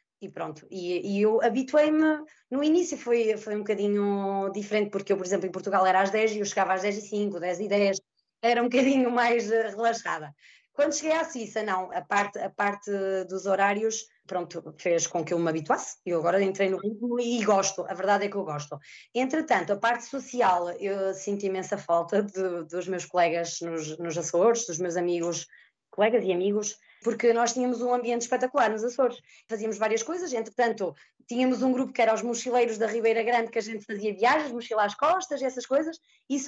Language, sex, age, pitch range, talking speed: Portuguese, female, 20-39, 195-245 Hz, 195 wpm